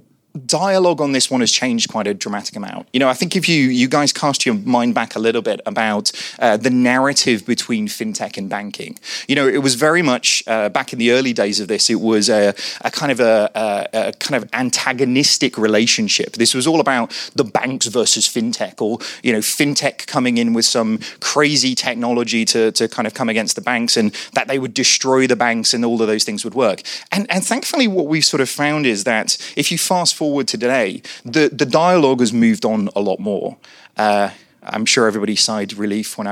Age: 30-49